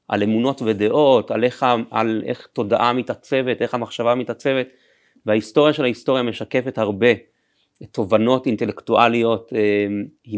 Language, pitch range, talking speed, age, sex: Hebrew, 110-135 Hz, 115 wpm, 30-49, male